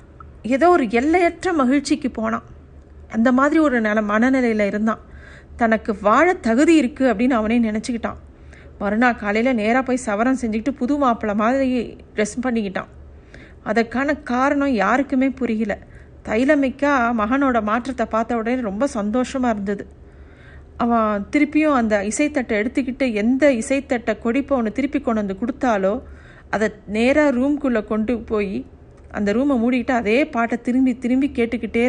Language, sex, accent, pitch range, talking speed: Tamil, female, native, 215-265 Hz, 125 wpm